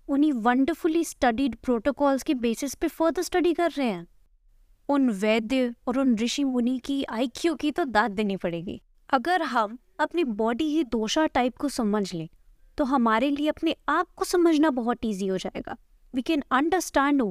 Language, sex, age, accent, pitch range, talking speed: Hindi, female, 20-39, native, 225-305 Hz, 165 wpm